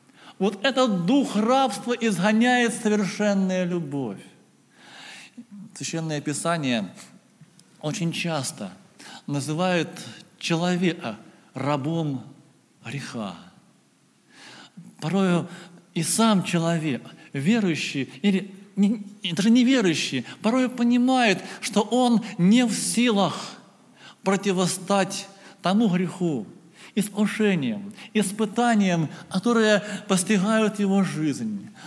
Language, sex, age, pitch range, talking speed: Russian, male, 50-69, 175-225 Hz, 75 wpm